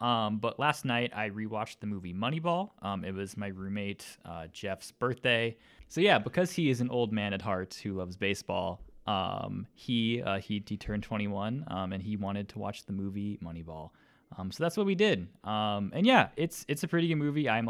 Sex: male